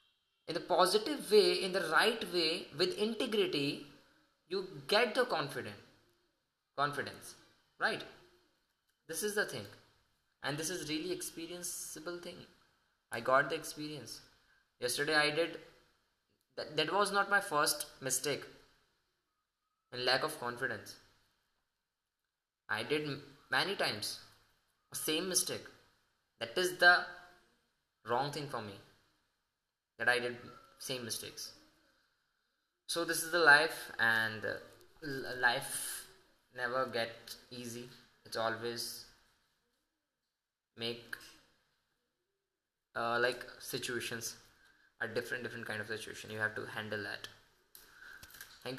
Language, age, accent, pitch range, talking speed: Hindi, 10-29, native, 115-160 Hz, 110 wpm